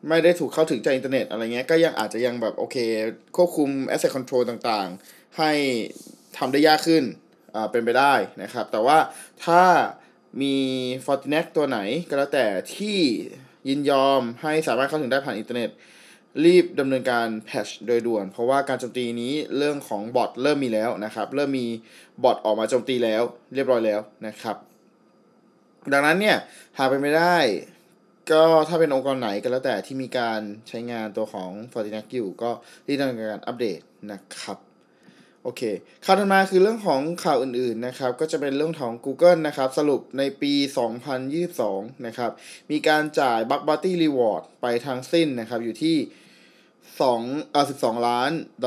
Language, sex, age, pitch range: Thai, male, 20-39, 120-155 Hz